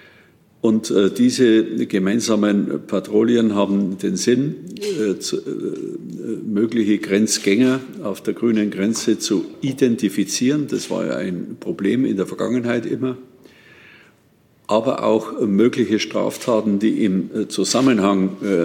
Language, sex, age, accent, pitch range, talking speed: German, male, 50-69, German, 100-125 Hz, 100 wpm